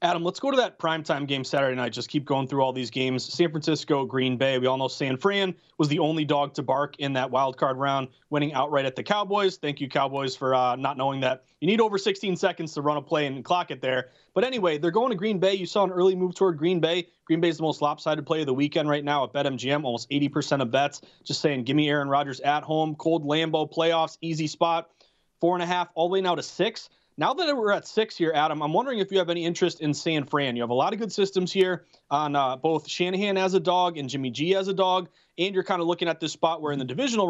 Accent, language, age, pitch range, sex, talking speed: American, English, 30-49, 140-180 Hz, male, 270 wpm